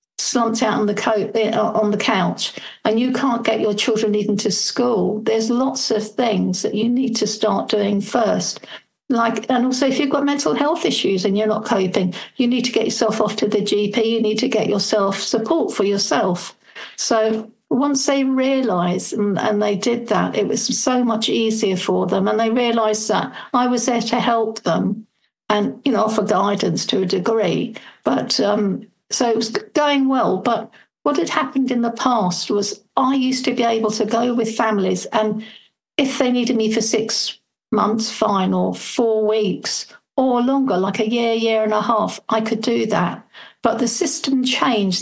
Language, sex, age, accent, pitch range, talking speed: English, female, 60-79, British, 210-245 Hz, 190 wpm